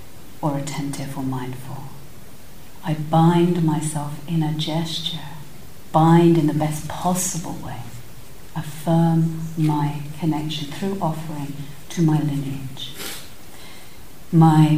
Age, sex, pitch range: 50-69, female, 150-175 Hz